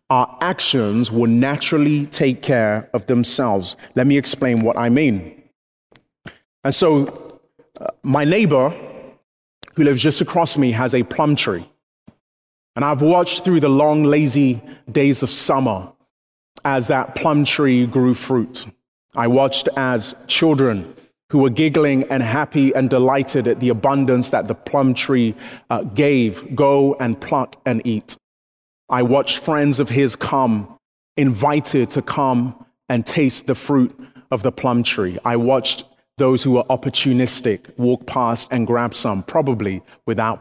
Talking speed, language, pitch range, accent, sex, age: 145 wpm, English, 120-145 Hz, British, male, 30-49